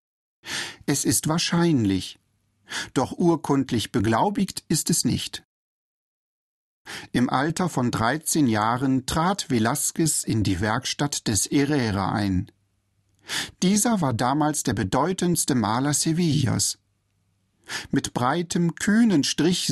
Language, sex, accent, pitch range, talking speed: German, male, German, 110-160 Hz, 100 wpm